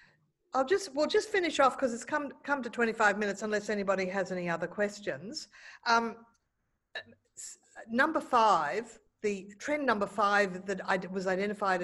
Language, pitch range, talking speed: English, 185-235 Hz, 150 wpm